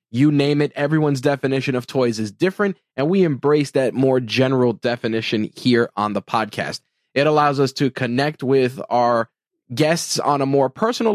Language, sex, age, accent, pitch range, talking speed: English, male, 20-39, American, 120-145 Hz, 170 wpm